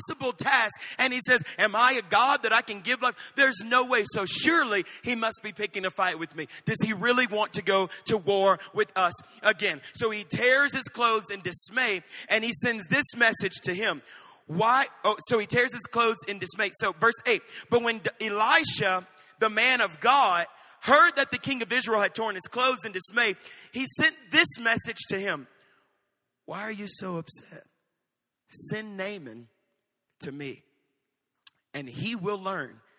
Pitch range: 175-235 Hz